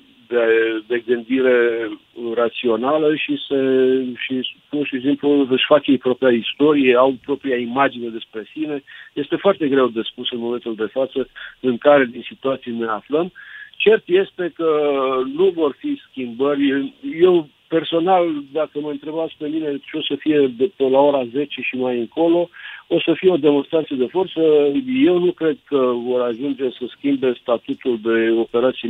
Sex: male